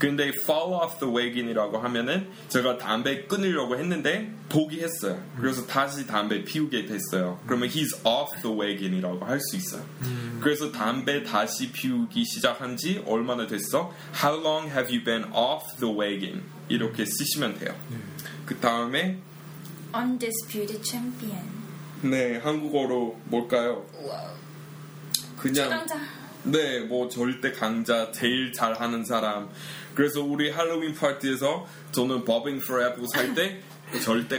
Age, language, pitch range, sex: 20-39, Korean, 120-160 Hz, male